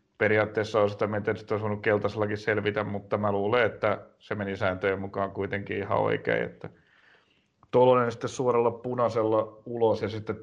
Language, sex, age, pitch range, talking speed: Finnish, male, 30-49, 100-115 Hz, 185 wpm